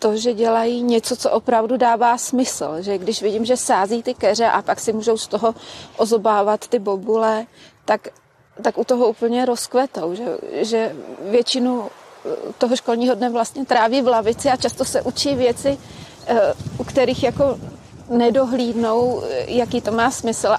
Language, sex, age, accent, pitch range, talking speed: Czech, female, 30-49, native, 220-250 Hz, 155 wpm